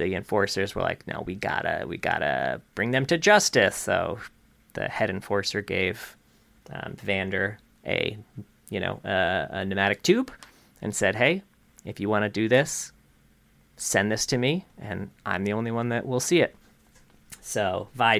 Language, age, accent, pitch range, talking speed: English, 30-49, American, 100-140 Hz, 170 wpm